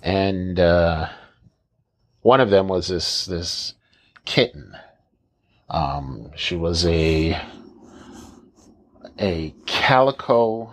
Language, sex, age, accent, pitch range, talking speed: English, male, 40-59, American, 85-110 Hz, 85 wpm